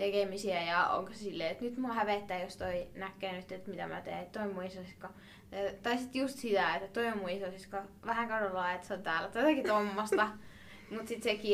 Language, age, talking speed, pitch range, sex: Finnish, 20-39, 190 wpm, 185-225 Hz, female